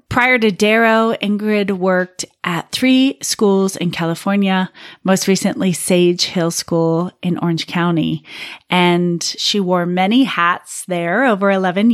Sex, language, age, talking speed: female, English, 30-49, 130 wpm